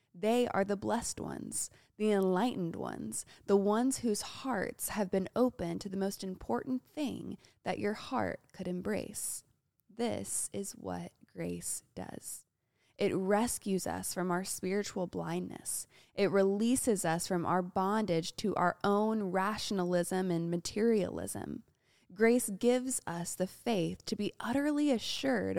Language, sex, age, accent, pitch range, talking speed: English, female, 20-39, American, 180-230 Hz, 135 wpm